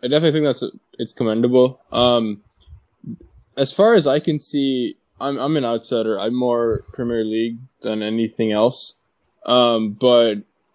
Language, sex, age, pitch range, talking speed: English, male, 10-29, 110-130 Hz, 150 wpm